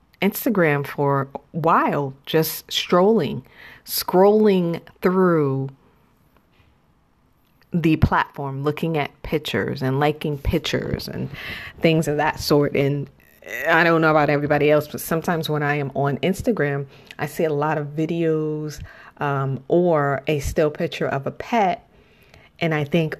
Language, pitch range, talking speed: English, 145-170 Hz, 135 wpm